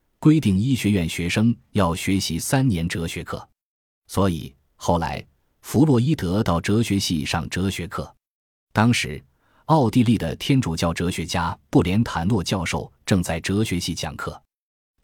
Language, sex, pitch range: Chinese, male, 85-115 Hz